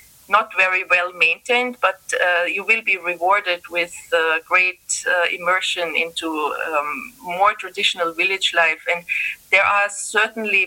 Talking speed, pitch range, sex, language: 140 wpm, 170-210 Hz, female, English